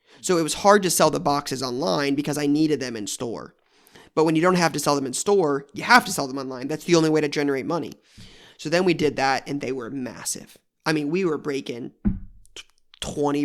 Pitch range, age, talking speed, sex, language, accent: 140-160 Hz, 20-39, 235 wpm, male, English, American